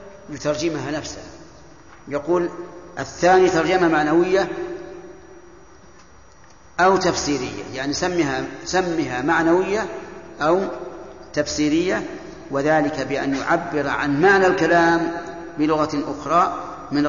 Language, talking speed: Arabic, 80 wpm